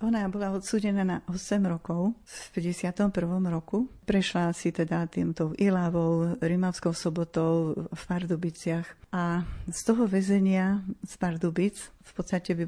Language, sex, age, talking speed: Slovak, female, 40-59, 130 wpm